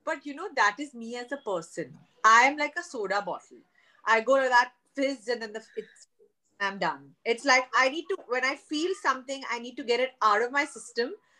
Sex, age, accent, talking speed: female, 30-49, Indian, 225 wpm